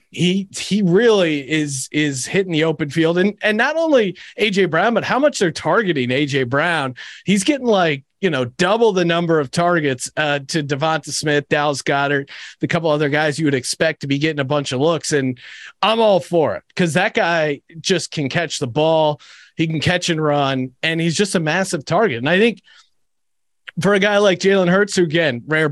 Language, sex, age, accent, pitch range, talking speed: English, male, 30-49, American, 145-195 Hz, 205 wpm